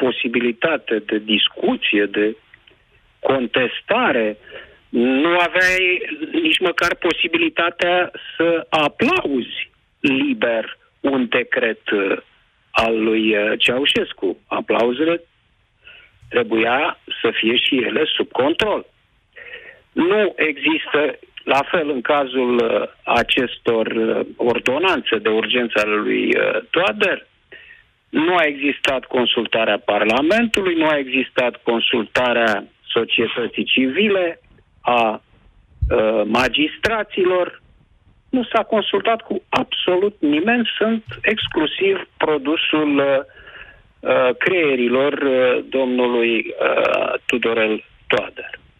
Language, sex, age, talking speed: Romanian, male, 50-69, 85 wpm